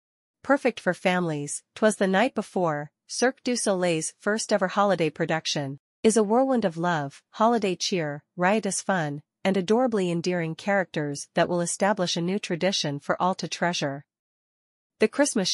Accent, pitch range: American, 160-200 Hz